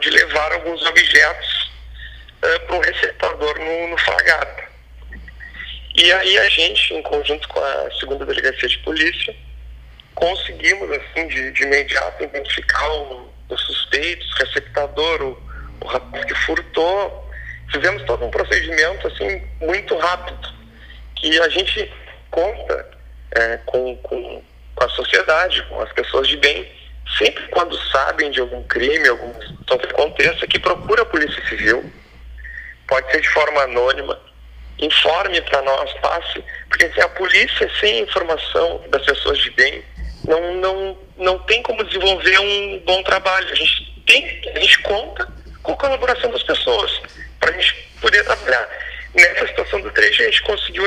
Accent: Brazilian